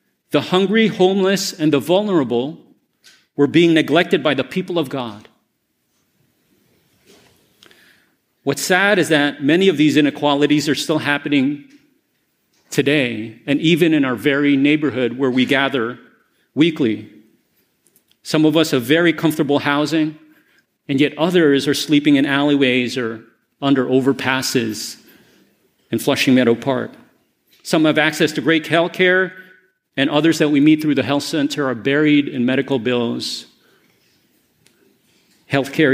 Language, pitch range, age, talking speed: English, 140-175 Hz, 40-59, 130 wpm